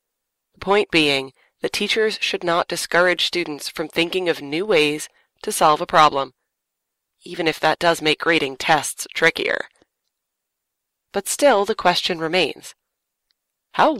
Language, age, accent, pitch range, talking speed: English, 30-49, American, 155-215 Hz, 135 wpm